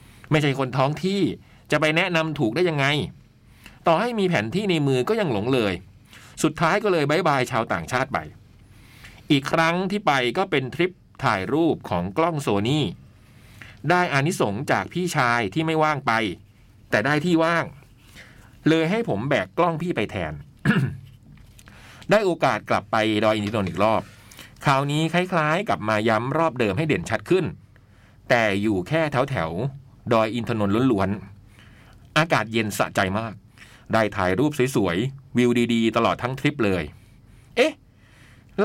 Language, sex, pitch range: Thai, male, 110-160 Hz